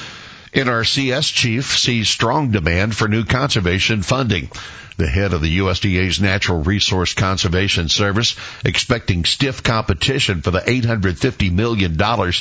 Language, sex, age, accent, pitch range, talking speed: English, male, 60-79, American, 90-115 Hz, 120 wpm